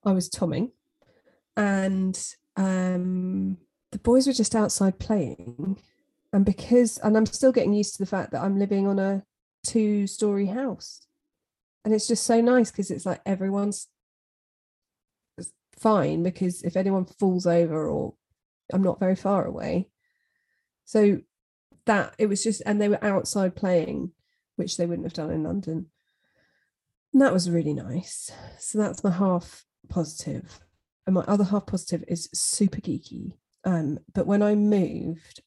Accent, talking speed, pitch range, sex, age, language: British, 150 wpm, 180-220 Hz, female, 30-49, English